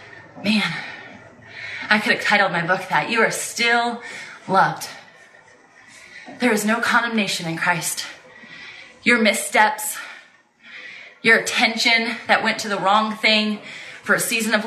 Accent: American